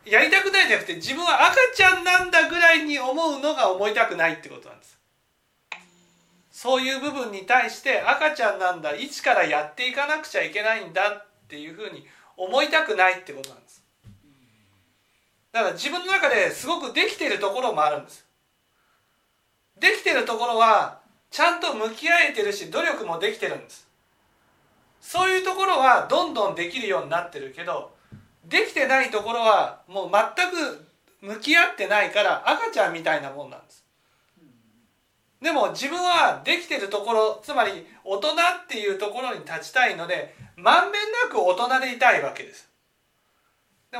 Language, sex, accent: Japanese, male, native